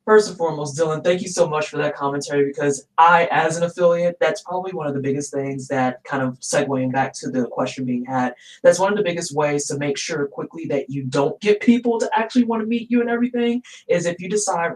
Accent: American